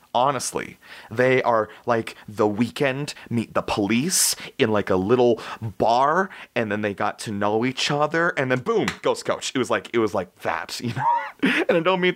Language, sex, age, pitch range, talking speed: English, male, 30-49, 95-135 Hz, 195 wpm